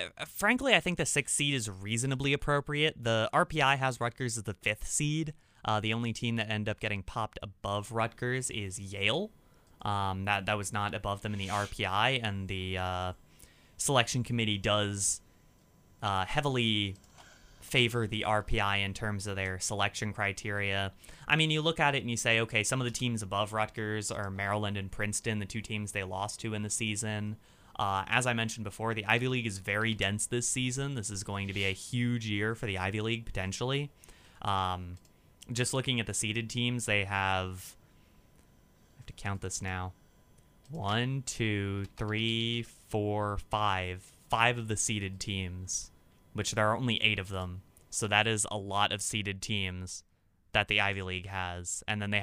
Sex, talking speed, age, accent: male, 185 wpm, 20-39, American